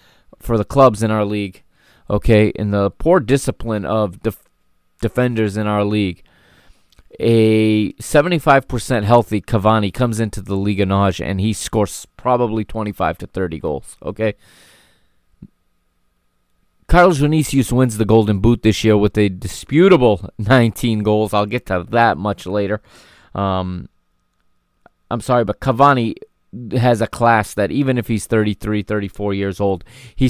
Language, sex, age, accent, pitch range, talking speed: English, male, 20-39, American, 100-120 Hz, 140 wpm